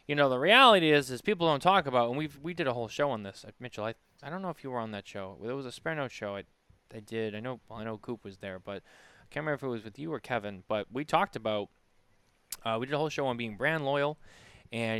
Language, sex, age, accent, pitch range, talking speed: English, male, 20-39, American, 105-140 Hz, 295 wpm